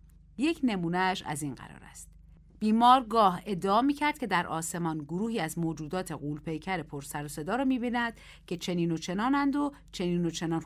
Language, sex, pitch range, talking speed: Persian, female, 150-225 Hz, 170 wpm